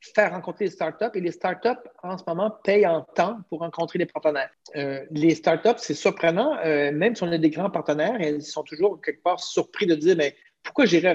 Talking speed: 225 wpm